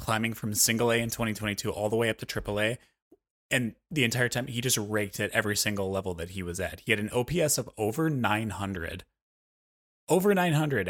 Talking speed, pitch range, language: 205 wpm, 100-120 Hz, English